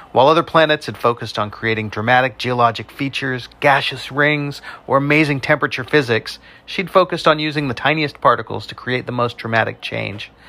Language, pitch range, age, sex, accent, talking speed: English, 115-145 Hz, 40-59, male, American, 165 wpm